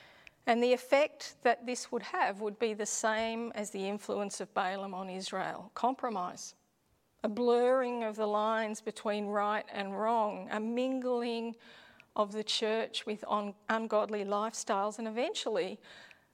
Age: 40-59